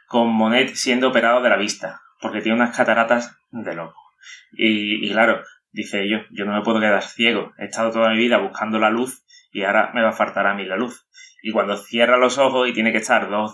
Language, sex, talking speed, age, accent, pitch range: Spanish, male, 230 wpm, 20-39, Spanish, 110-125 Hz